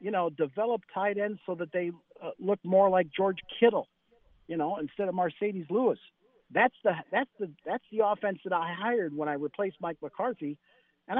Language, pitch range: English, 145-195 Hz